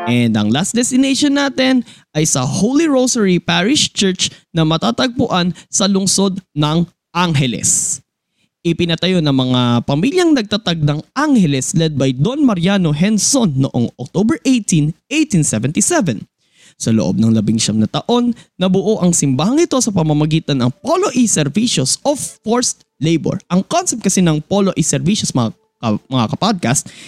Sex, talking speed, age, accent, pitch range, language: male, 135 wpm, 20-39, native, 145-220 Hz, Filipino